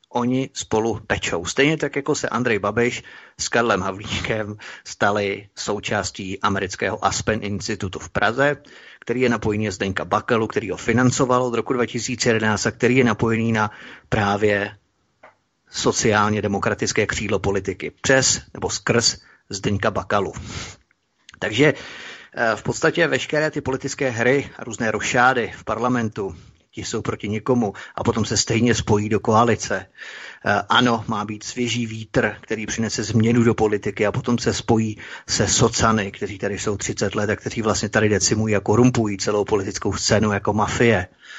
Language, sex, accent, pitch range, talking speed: Czech, male, native, 105-120 Hz, 145 wpm